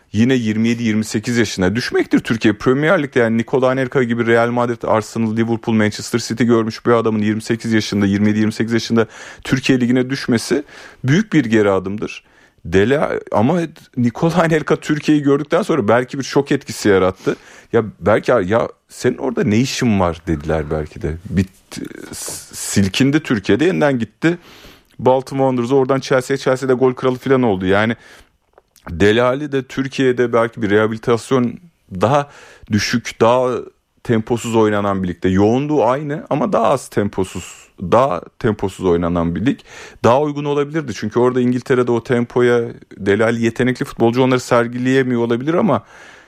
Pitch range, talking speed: 110-130 Hz, 140 wpm